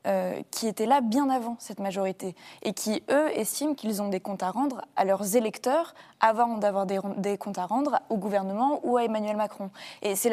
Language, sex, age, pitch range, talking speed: French, female, 20-39, 195-235 Hz, 215 wpm